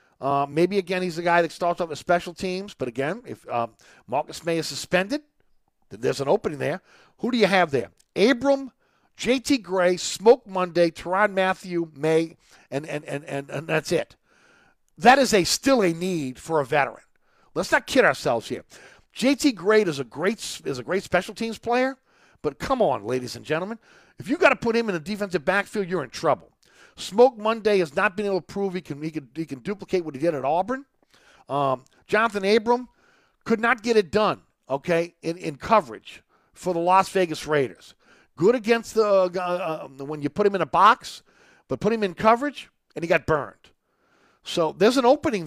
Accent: American